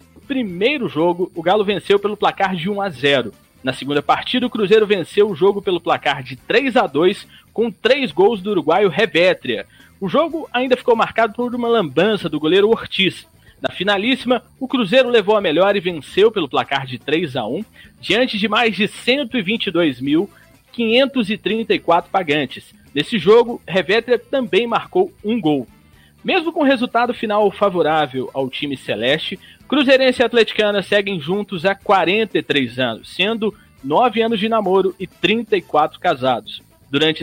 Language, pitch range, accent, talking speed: Portuguese, 170-235 Hz, Brazilian, 155 wpm